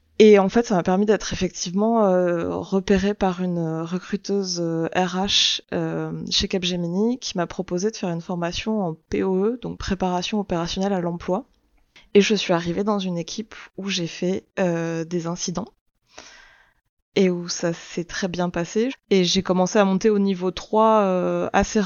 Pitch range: 180-210 Hz